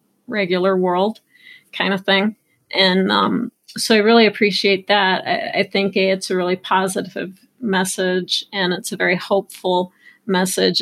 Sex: female